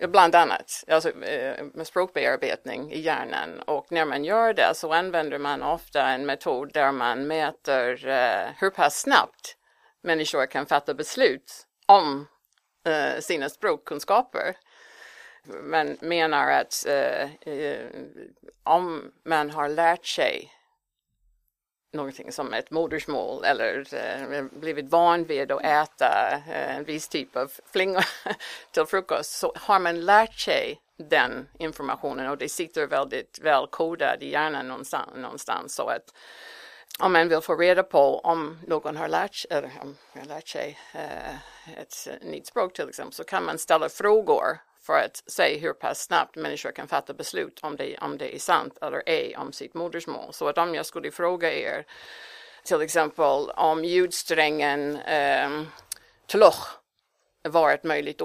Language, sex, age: Swedish, female, 50-69